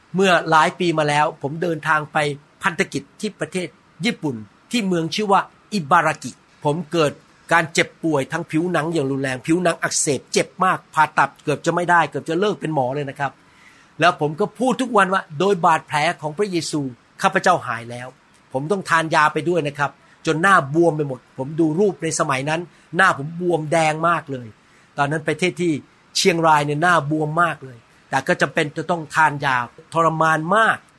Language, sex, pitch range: Thai, male, 155-190 Hz